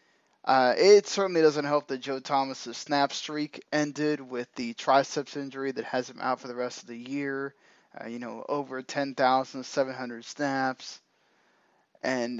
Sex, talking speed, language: male, 155 wpm, English